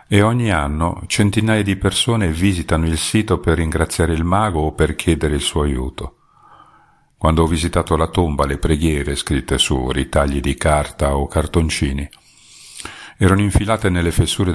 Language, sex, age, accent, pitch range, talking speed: Italian, male, 50-69, native, 75-90 Hz, 155 wpm